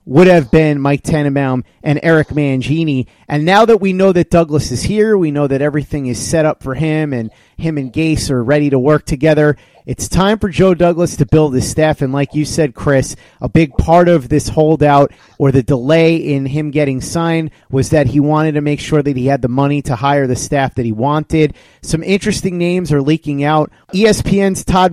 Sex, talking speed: male, 215 wpm